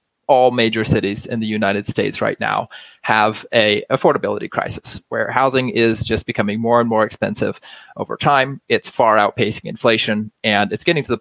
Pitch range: 110-130 Hz